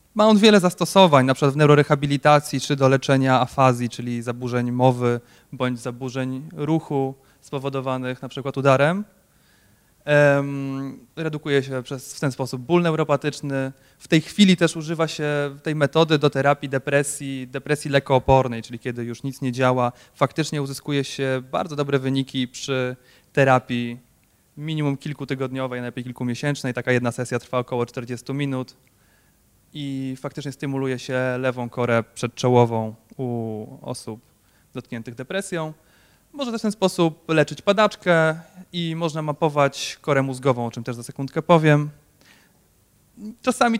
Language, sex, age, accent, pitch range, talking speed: Polish, male, 20-39, native, 125-160 Hz, 135 wpm